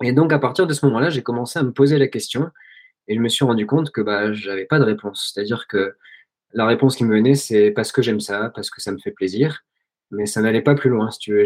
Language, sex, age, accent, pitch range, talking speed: French, male, 20-39, French, 110-140 Hz, 285 wpm